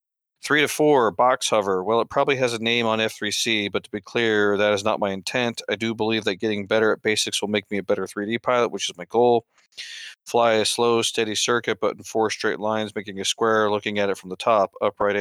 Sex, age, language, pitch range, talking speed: male, 40-59, English, 100-115 Hz, 240 wpm